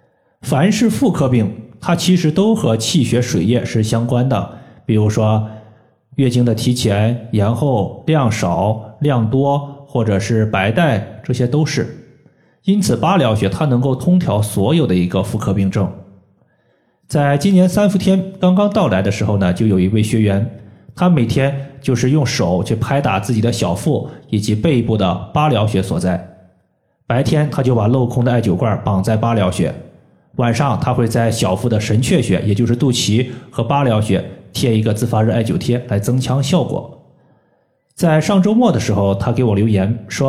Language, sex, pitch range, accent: Chinese, male, 110-150 Hz, native